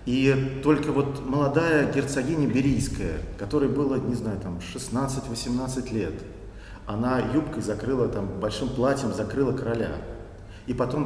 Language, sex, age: Russian, male, 40-59